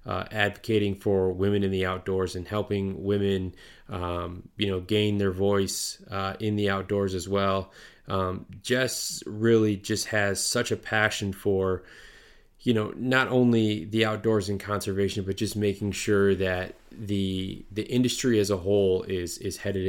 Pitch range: 95-105 Hz